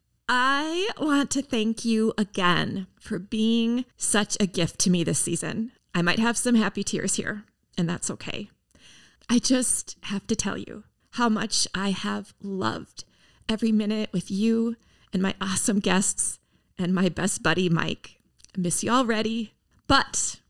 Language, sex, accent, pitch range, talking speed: English, female, American, 185-235 Hz, 160 wpm